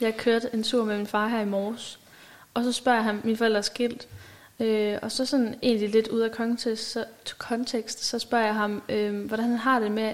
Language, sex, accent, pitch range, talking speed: Danish, female, native, 215-240 Hz, 230 wpm